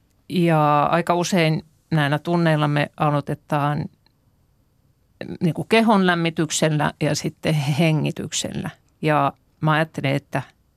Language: Finnish